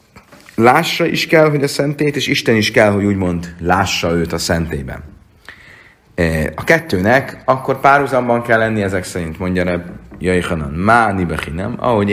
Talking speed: 155 wpm